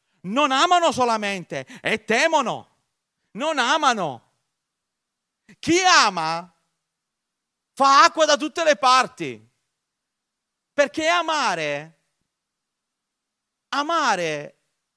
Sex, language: male, Italian